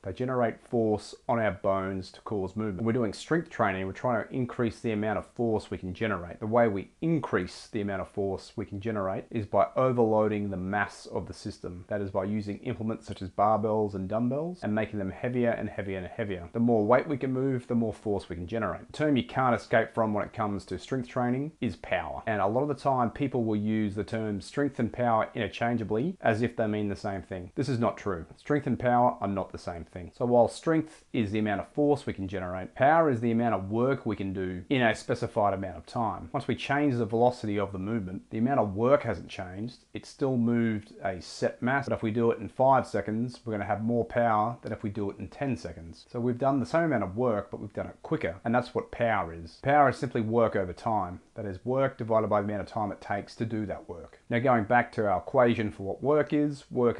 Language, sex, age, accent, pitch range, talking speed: English, male, 30-49, Australian, 100-120 Hz, 255 wpm